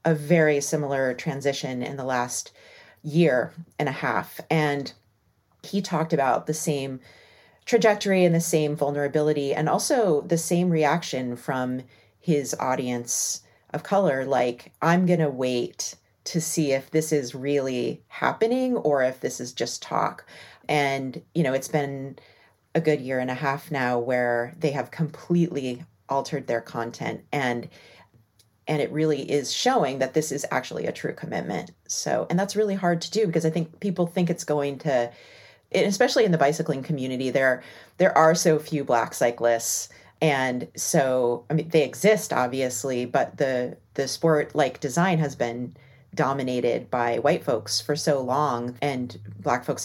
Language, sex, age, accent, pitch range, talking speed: English, female, 30-49, American, 125-160 Hz, 160 wpm